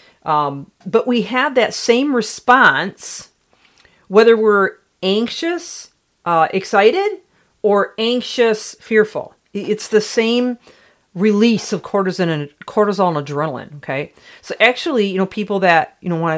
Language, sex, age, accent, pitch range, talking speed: English, female, 40-59, American, 165-215 Hz, 130 wpm